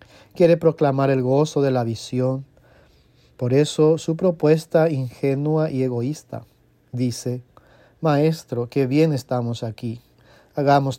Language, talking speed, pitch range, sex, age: English, 115 wpm, 130-155 Hz, male, 40-59